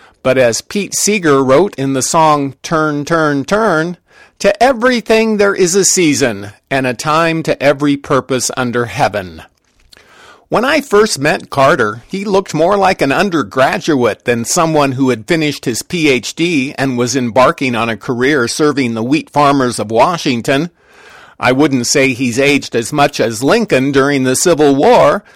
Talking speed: 160 wpm